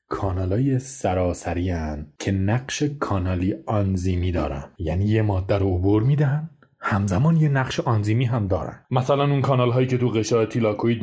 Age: 30-49